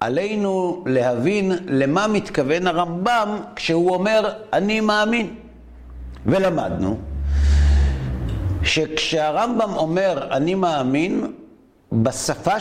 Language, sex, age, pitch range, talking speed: Hebrew, male, 50-69, 125-210 Hz, 70 wpm